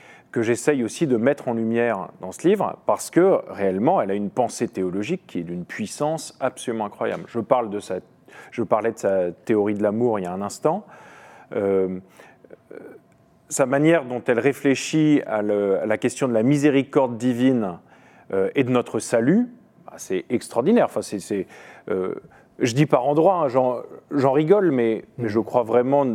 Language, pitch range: French, 110-150 Hz